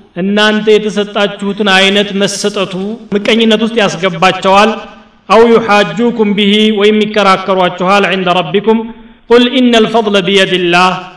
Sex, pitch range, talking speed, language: male, 165-195 Hz, 105 wpm, Amharic